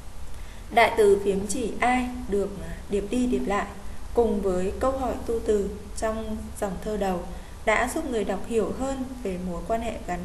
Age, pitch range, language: 20-39, 195-250 Hz, Vietnamese